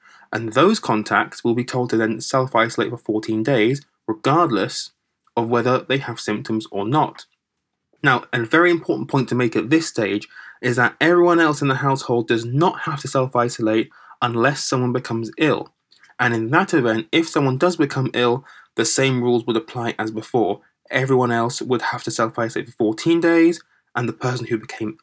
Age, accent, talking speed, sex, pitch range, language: 20-39, British, 180 wpm, male, 115-150 Hz, English